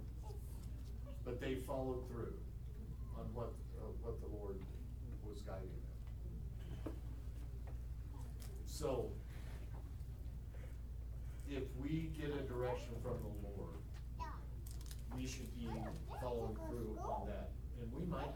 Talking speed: 105 wpm